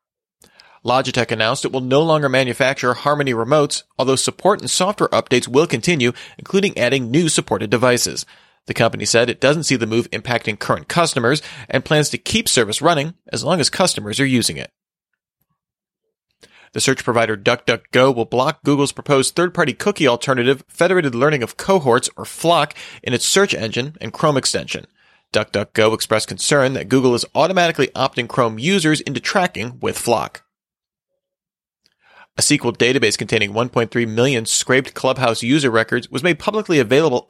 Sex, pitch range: male, 120-155 Hz